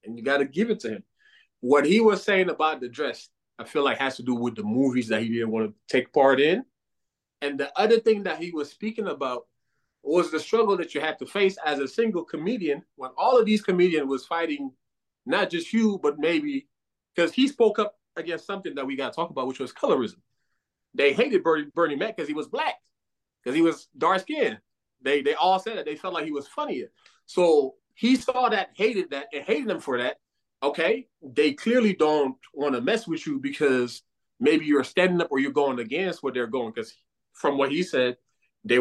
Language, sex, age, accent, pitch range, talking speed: English, male, 30-49, American, 135-215 Hz, 215 wpm